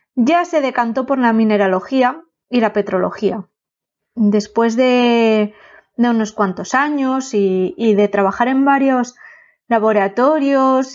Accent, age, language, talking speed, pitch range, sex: Spanish, 20-39, Spanish, 120 wpm, 215-275 Hz, female